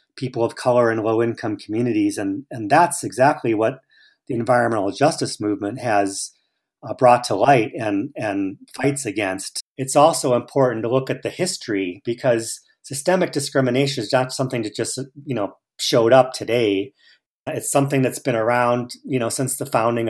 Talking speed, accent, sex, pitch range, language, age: 165 wpm, American, male, 110-135 Hz, English, 40-59